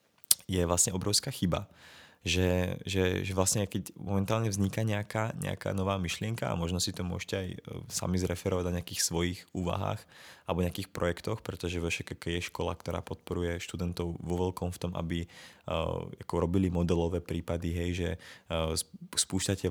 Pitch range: 85-100 Hz